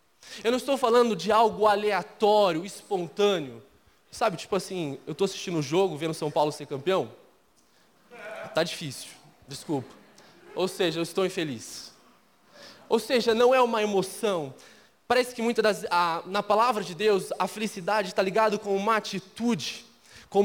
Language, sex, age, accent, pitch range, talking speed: Portuguese, male, 20-39, Brazilian, 180-230 Hz, 155 wpm